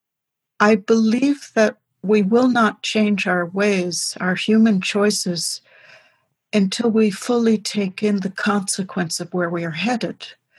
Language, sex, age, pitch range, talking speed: English, female, 60-79, 180-220 Hz, 135 wpm